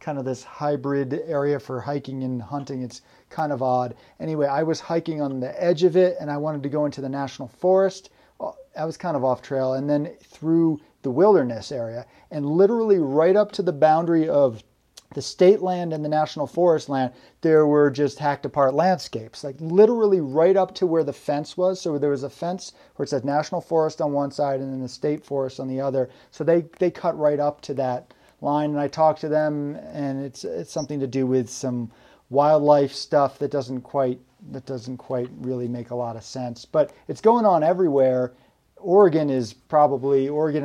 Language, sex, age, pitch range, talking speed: English, male, 40-59, 130-160 Hz, 205 wpm